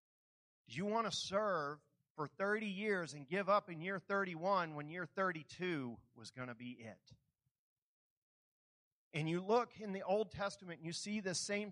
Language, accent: English, American